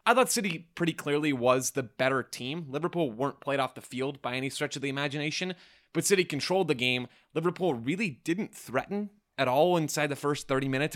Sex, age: male, 20-39